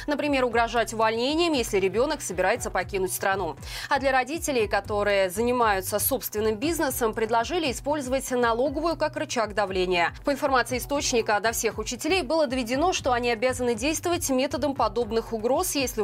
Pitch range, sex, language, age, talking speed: 220-285 Hz, female, Russian, 20-39, 140 wpm